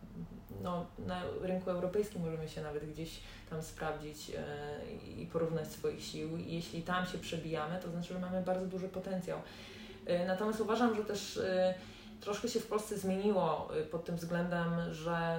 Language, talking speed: Polish, 150 wpm